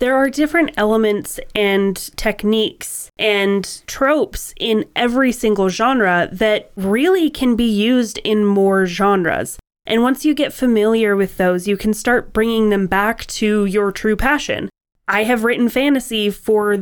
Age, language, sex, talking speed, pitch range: 20-39, English, female, 150 wpm, 200-245 Hz